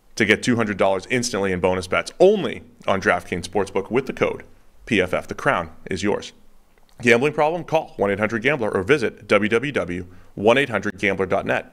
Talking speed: 135 wpm